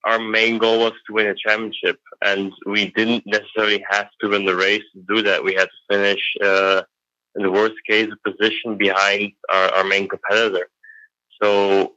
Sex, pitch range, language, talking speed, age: male, 95-110 Hz, English, 185 wpm, 20-39